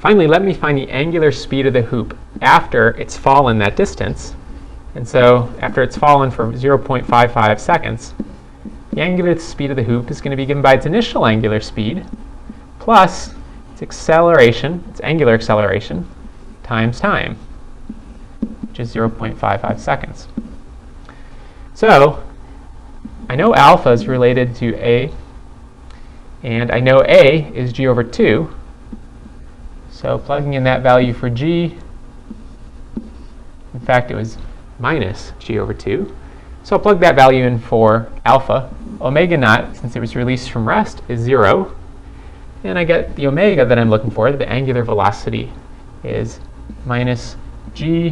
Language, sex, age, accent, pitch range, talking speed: English, male, 30-49, American, 115-140 Hz, 140 wpm